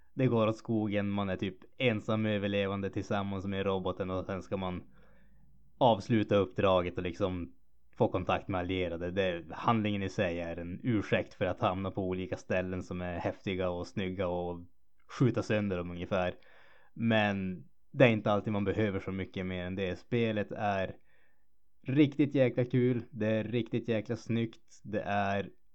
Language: Swedish